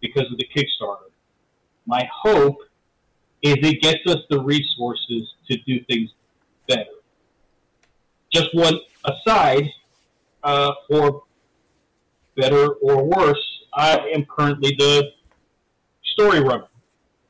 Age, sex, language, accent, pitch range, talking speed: 40-59, male, English, American, 130-155 Hz, 105 wpm